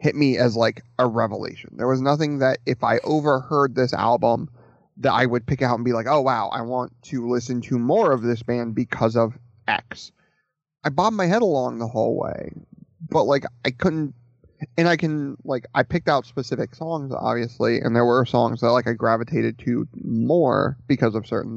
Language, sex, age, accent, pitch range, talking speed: English, male, 30-49, American, 120-145 Hz, 200 wpm